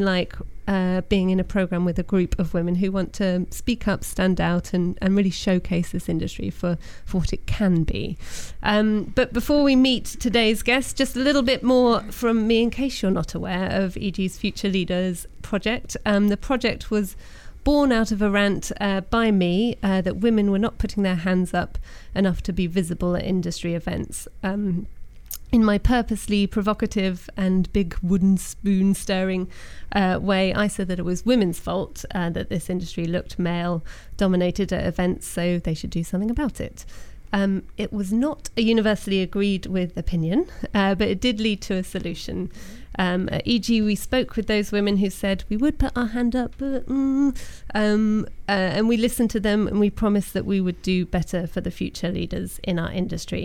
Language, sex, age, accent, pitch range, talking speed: English, female, 30-49, British, 185-220 Hz, 190 wpm